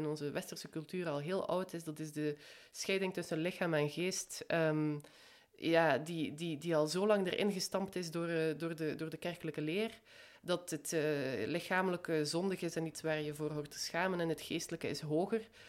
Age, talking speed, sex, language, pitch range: 20-39, 185 wpm, female, Dutch, 150-180 Hz